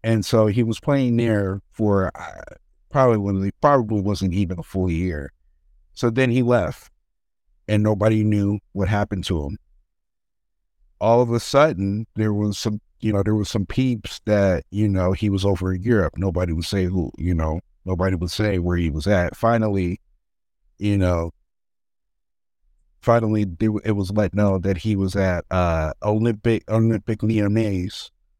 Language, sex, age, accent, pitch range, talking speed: English, male, 50-69, American, 90-110 Hz, 160 wpm